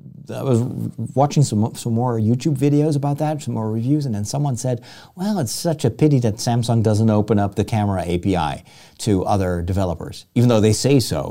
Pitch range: 105-145 Hz